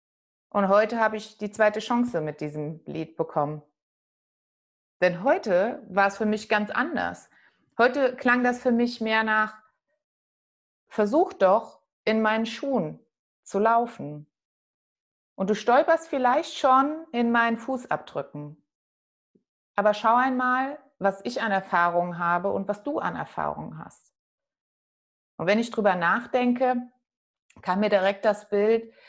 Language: German